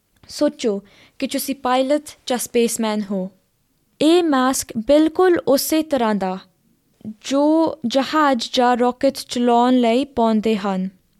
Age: 20-39